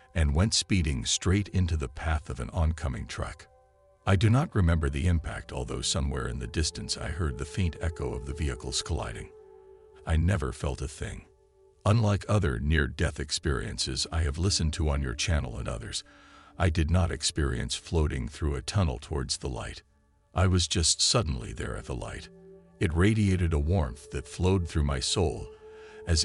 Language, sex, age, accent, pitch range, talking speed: English, male, 60-79, American, 75-105 Hz, 180 wpm